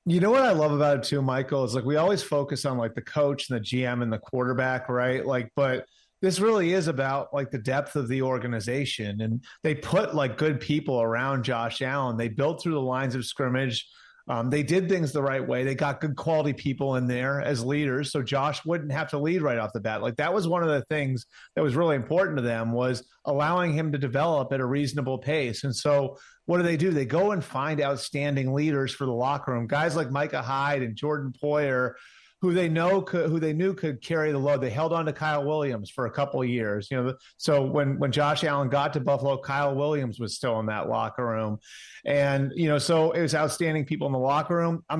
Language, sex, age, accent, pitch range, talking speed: English, male, 30-49, American, 130-155 Hz, 235 wpm